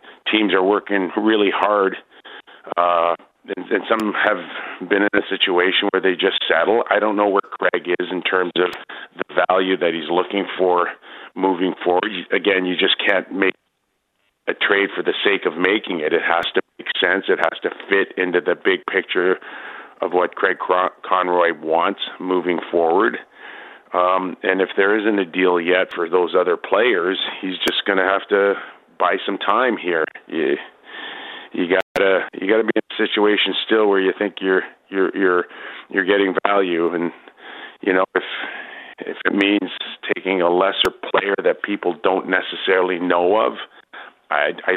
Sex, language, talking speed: male, English, 170 wpm